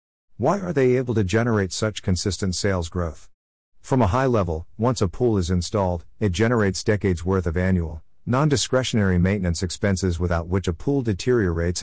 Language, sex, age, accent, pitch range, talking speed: English, male, 50-69, American, 90-115 Hz, 165 wpm